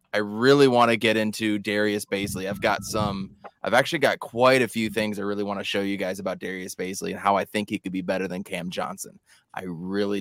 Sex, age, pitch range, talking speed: male, 20-39, 100-115 Hz, 240 wpm